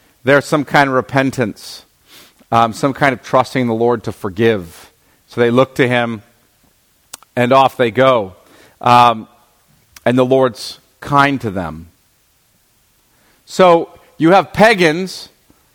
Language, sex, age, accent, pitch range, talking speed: English, male, 40-59, American, 115-155 Hz, 130 wpm